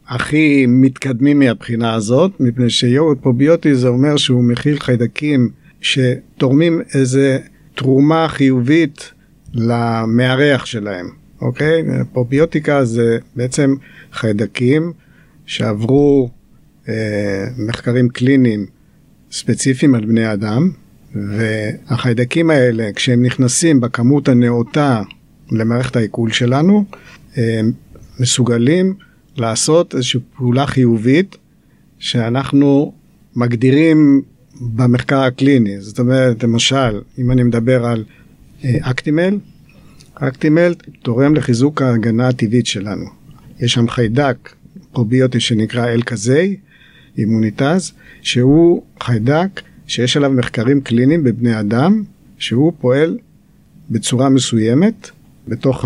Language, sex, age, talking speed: Hebrew, male, 50-69, 90 wpm